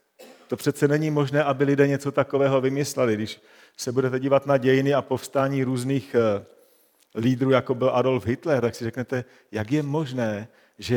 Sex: male